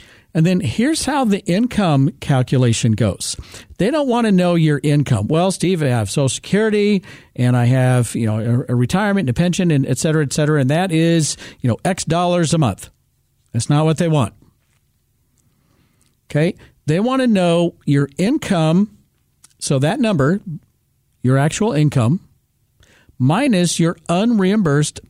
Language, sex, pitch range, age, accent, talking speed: English, male, 130-180 Hz, 50-69, American, 160 wpm